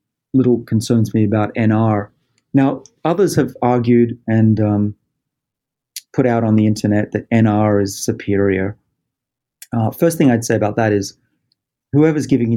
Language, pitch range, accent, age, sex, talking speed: English, 105-130 Hz, Australian, 40-59, male, 145 wpm